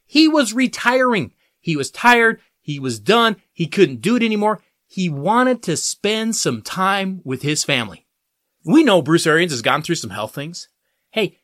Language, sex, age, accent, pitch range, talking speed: English, male, 30-49, American, 170-240 Hz, 180 wpm